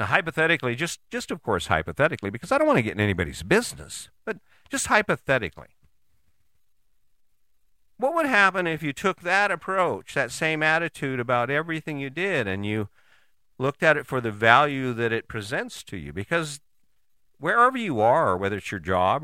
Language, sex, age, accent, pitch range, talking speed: English, male, 50-69, American, 90-150 Hz, 170 wpm